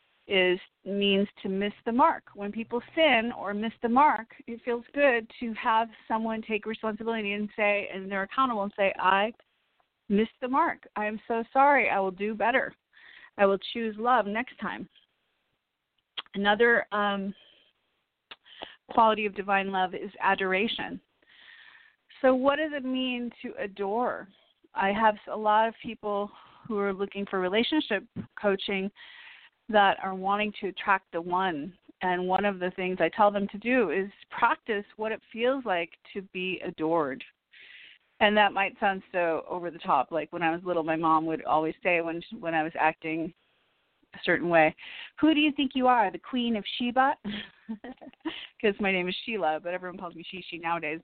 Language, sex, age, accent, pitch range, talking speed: English, female, 40-59, American, 190-235 Hz, 175 wpm